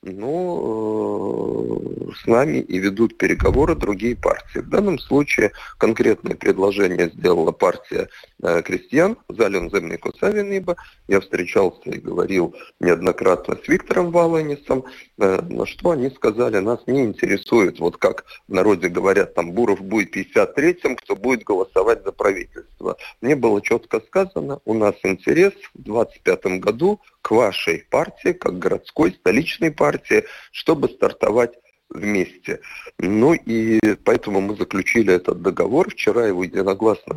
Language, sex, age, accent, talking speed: Russian, male, 40-59, native, 125 wpm